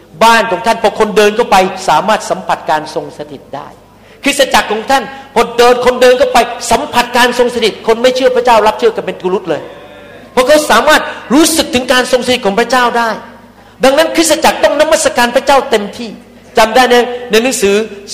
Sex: male